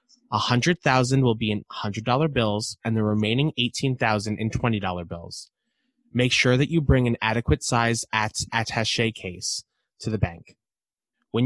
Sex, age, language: male, 20-39, English